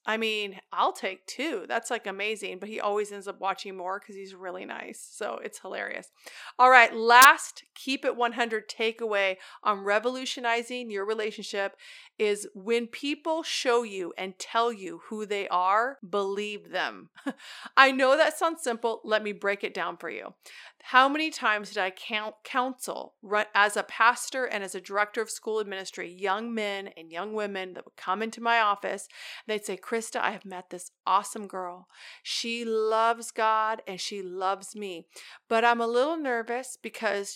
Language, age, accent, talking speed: English, 40-59, American, 170 wpm